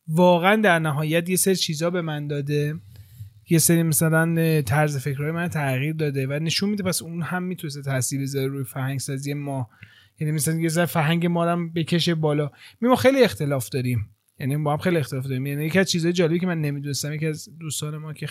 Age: 30-49